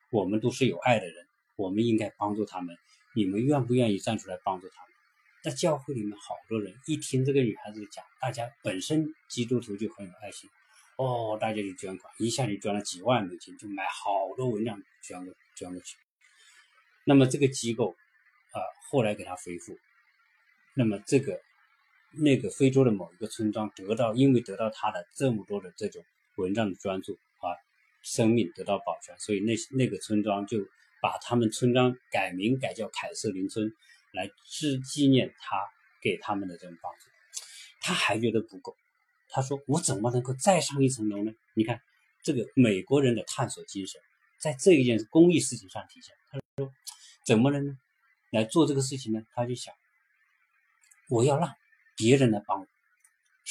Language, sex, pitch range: Chinese, male, 105-135 Hz